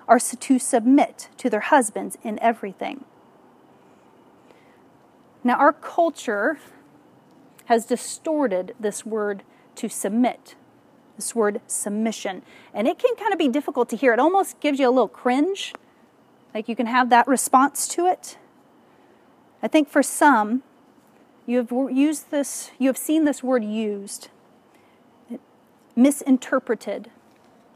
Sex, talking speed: female, 130 wpm